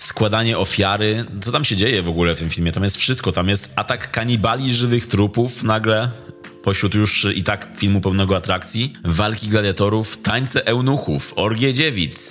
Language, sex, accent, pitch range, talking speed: Polish, male, native, 90-110 Hz, 165 wpm